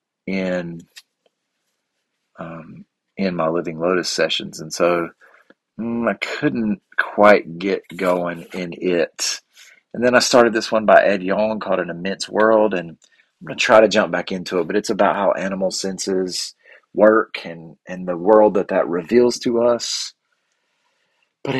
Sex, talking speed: male, 160 wpm